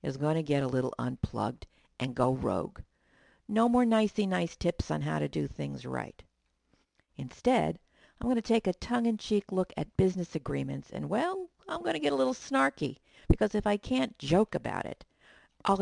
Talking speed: 180 wpm